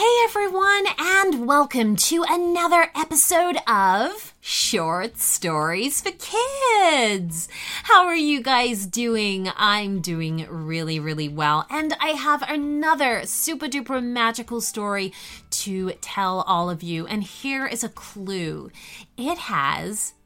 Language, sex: English, female